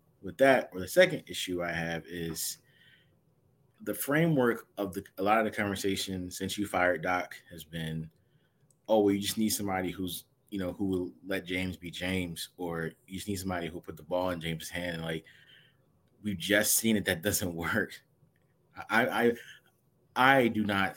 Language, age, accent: English, 20-39, American